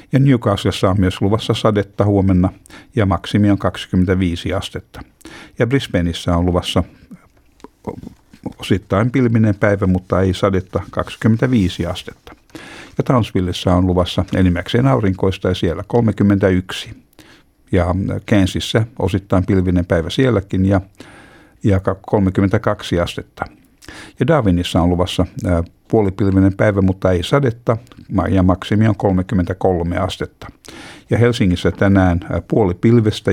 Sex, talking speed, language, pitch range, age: male, 105 wpm, Finnish, 90-110 Hz, 60-79